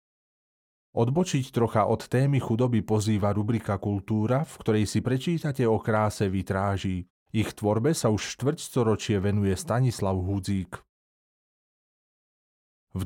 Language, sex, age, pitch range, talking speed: Slovak, male, 40-59, 100-130 Hz, 110 wpm